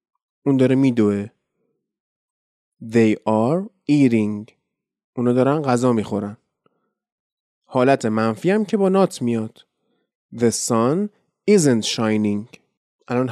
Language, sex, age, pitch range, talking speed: Persian, male, 30-49, 110-145 Hz, 100 wpm